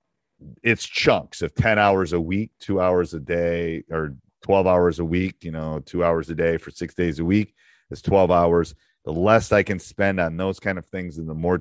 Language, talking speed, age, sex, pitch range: English, 220 wpm, 40-59, male, 80-105 Hz